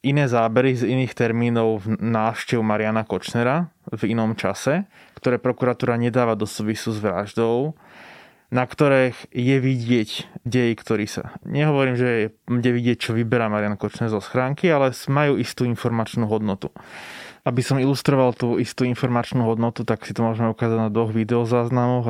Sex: male